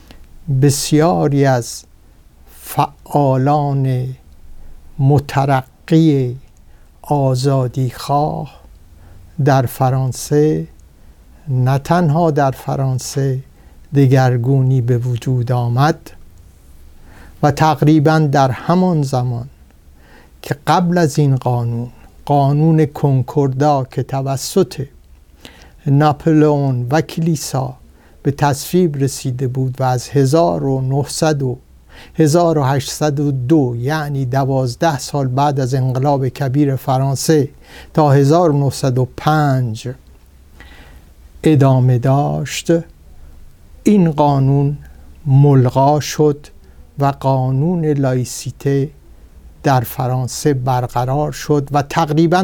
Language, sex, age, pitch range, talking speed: Persian, male, 60-79, 120-150 Hz, 75 wpm